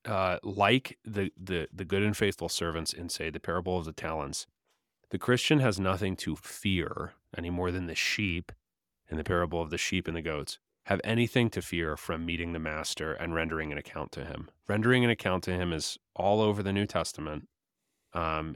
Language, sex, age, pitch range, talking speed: English, male, 30-49, 80-100 Hz, 200 wpm